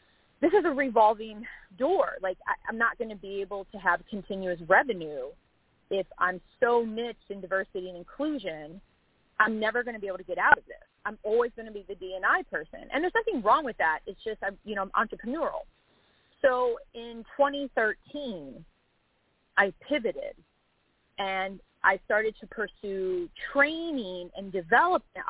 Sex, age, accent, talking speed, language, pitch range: female, 30-49, American, 165 wpm, English, 180-245 Hz